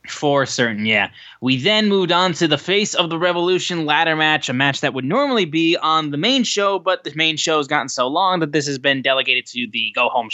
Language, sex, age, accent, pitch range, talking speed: English, male, 10-29, American, 120-150 Hz, 240 wpm